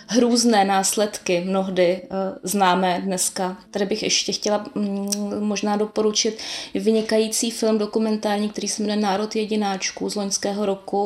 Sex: female